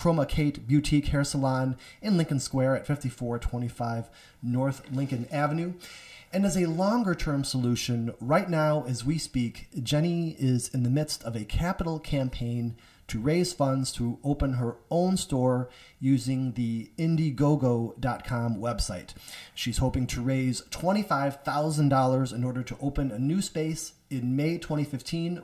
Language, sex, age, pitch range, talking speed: English, male, 30-49, 125-155 Hz, 140 wpm